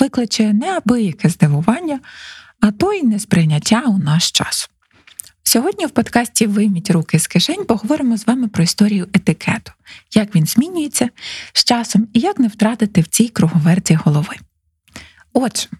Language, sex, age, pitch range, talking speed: Ukrainian, female, 20-39, 180-240 Hz, 140 wpm